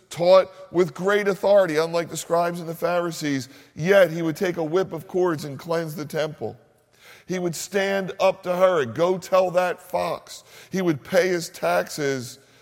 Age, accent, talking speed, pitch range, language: 50-69, American, 180 wpm, 145-180 Hz, English